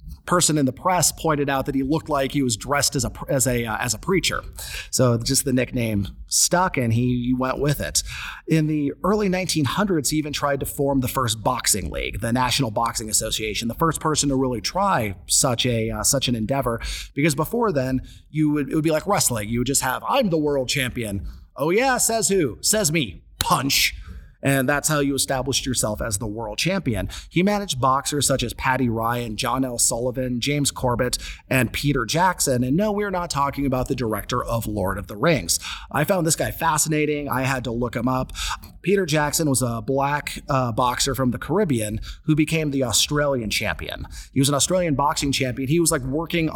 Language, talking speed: English, 205 wpm